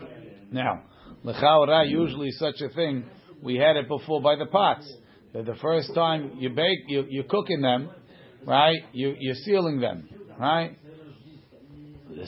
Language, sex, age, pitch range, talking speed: English, male, 60-79, 130-160 Hz, 130 wpm